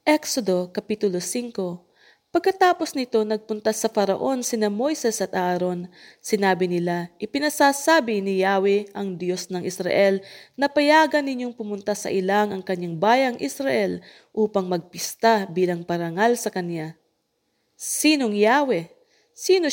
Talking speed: 125 wpm